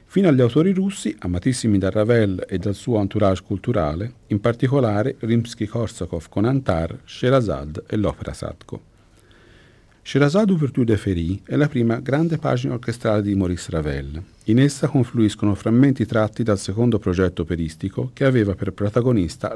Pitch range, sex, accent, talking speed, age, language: 95-135 Hz, male, native, 145 wpm, 50-69, Italian